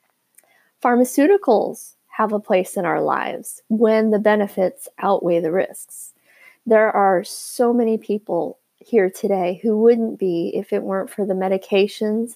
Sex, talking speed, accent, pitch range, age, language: female, 140 wpm, American, 180-230 Hz, 30-49, English